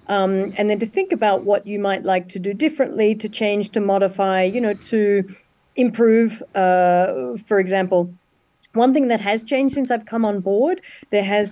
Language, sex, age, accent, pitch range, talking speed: English, female, 40-59, Australian, 185-215 Hz, 190 wpm